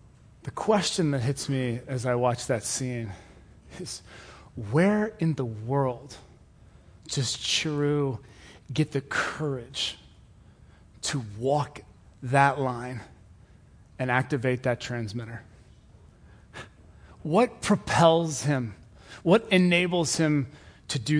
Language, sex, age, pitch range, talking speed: English, male, 30-49, 110-155 Hz, 100 wpm